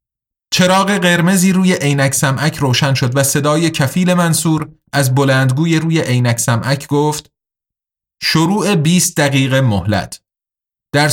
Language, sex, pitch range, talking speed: Persian, male, 130-175 Hz, 120 wpm